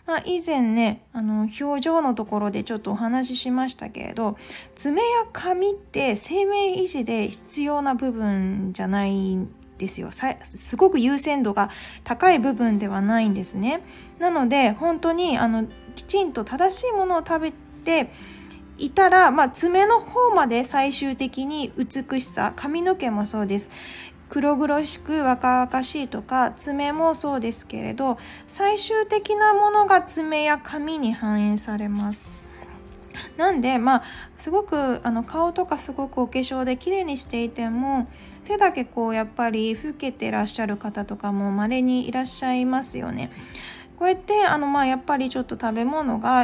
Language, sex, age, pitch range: Japanese, female, 20-39, 225-325 Hz